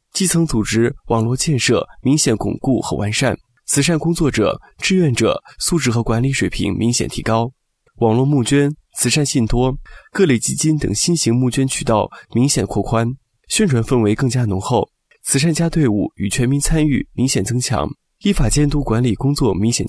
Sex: male